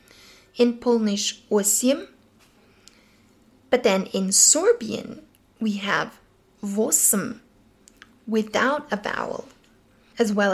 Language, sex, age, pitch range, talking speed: English, female, 20-39, 210-260 Hz, 85 wpm